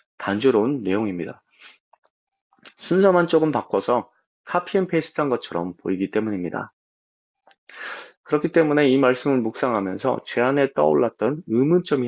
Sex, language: male, Korean